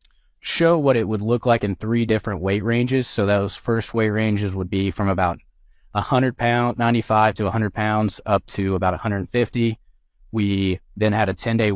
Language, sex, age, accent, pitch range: Chinese, male, 20-39, American, 90-110 Hz